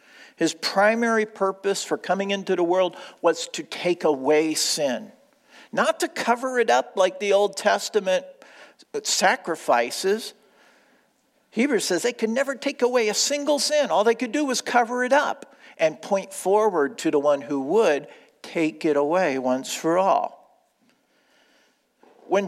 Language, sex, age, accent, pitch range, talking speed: English, male, 50-69, American, 185-280 Hz, 150 wpm